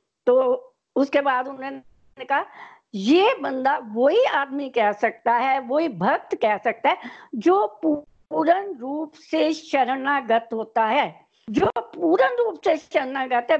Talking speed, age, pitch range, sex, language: 140 wpm, 60-79, 255-335 Hz, female, Hindi